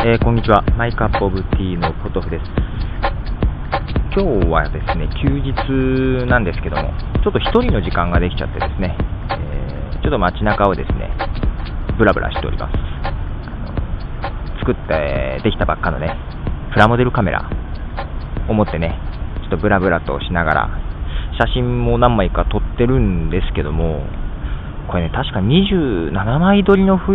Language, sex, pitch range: Japanese, male, 80-105 Hz